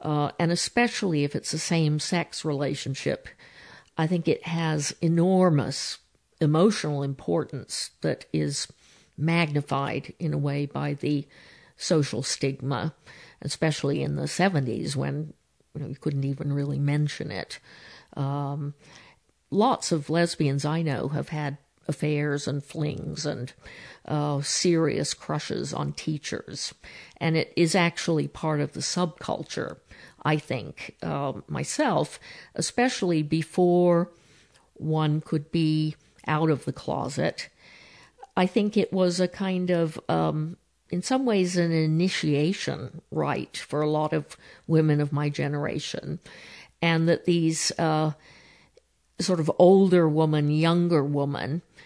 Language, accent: English, American